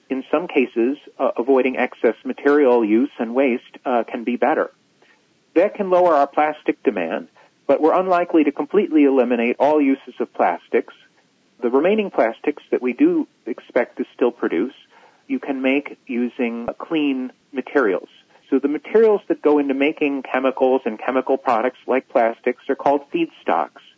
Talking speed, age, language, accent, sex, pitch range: 160 wpm, 40-59, English, American, male, 130-170 Hz